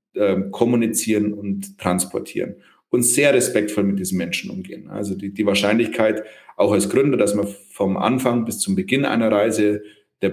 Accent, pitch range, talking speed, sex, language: German, 100-125 Hz, 155 wpm, male, German